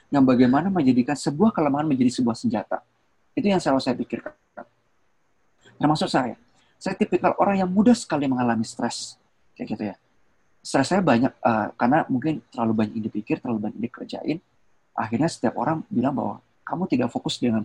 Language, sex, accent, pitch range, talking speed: Indonesian, male, native, 120-175 Hz, 160 wpm